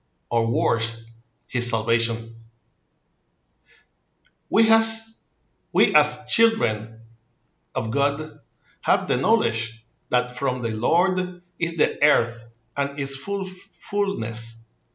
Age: 60-79